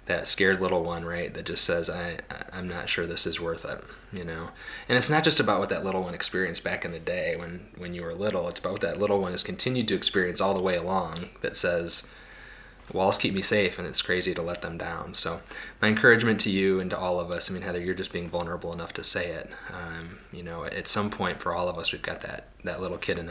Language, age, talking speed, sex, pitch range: English, 20-39, 265 wpm, male, 90-105 Hz